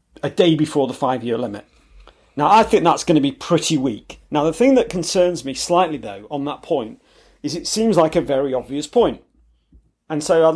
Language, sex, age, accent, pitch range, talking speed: English, male, 40-59, British, 130-190 Hz, 210 wpm